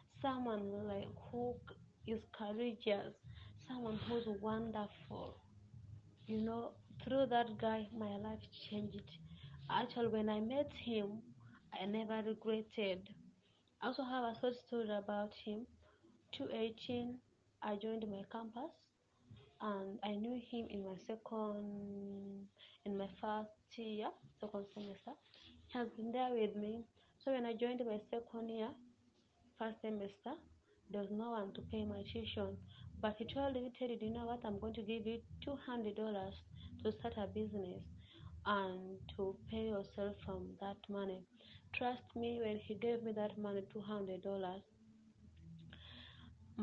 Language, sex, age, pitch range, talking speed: English, female, 20-39, 195-225 Hz, 140 wpm